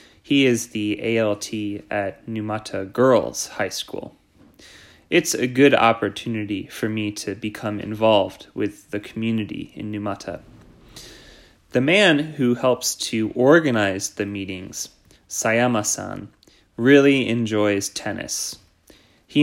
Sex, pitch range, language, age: male, 105-120 Hz, Japanese, 20-39